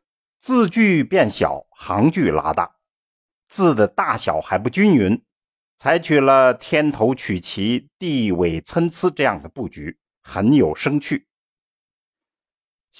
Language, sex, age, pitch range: Chinese, male, 50-69, 95-160 Hz